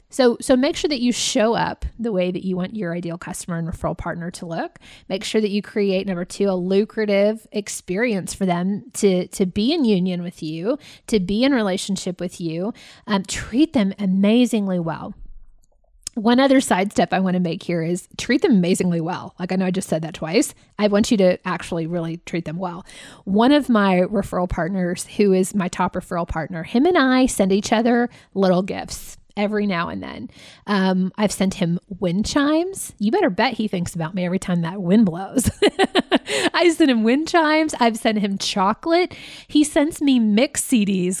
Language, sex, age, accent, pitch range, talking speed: English, female, 20-39, American, 180-245 Hz, 200 wpm